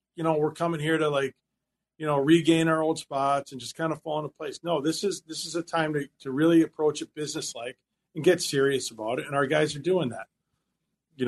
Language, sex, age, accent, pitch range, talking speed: English, male, 40-59, American, 130-160 Hz, 245 wpm